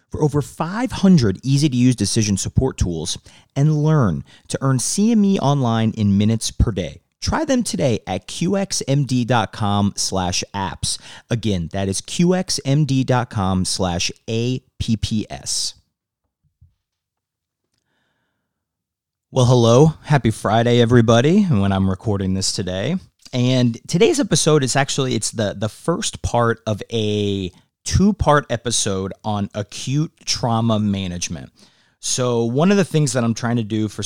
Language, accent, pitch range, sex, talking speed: English, American, 100-125 Hz, male, 120 wpm